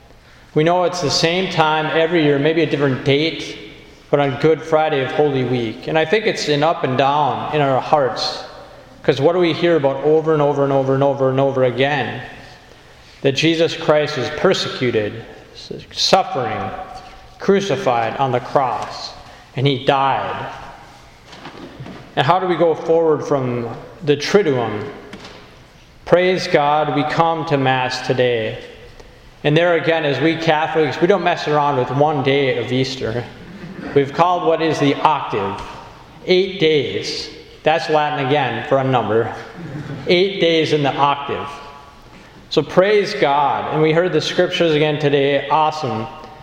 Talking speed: 155 wpm